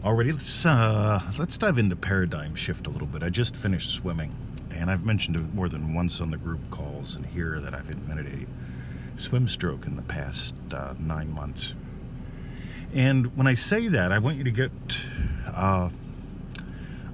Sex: male